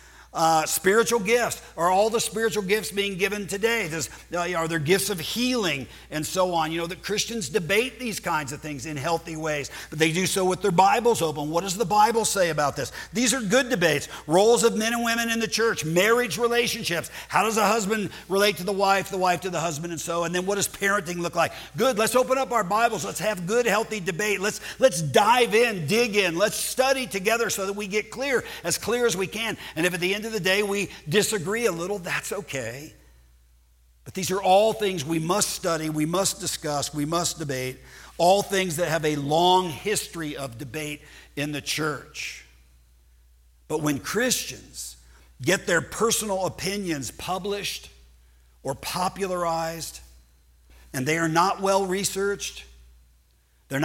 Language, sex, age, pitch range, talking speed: English, male, 50-69, 150-210 Hz, 190 wpm